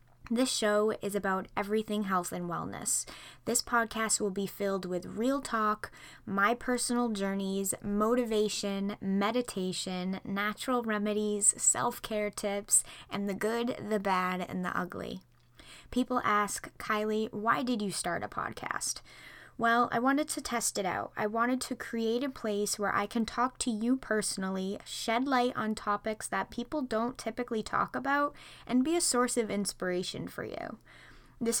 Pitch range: 195-235 Hz